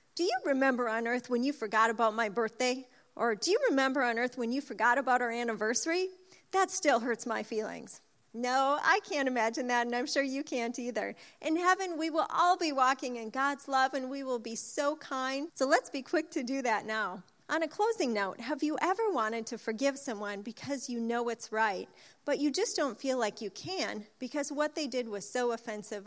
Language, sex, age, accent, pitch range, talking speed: English, female, 30-49, American, 225-295 Hz, 215 wpm